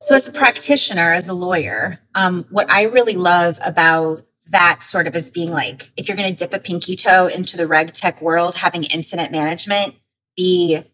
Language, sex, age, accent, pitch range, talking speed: English, female, 30-49, American, 165-205 Hz, 195 wpm